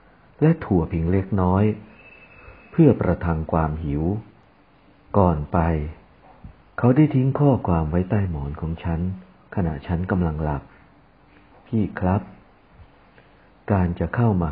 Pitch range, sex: 80-100 Hz, male